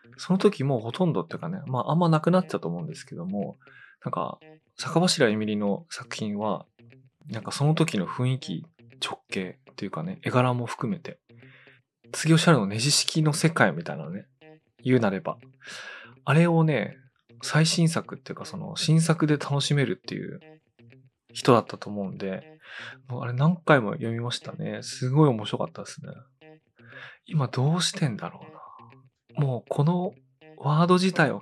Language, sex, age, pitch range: Japanese, male, 20-39, 120-155 Hz